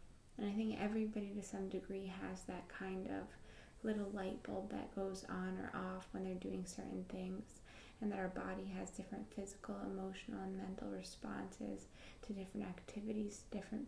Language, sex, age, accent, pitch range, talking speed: English, female, 20-39, American, 185-210 Hz, 170 wpm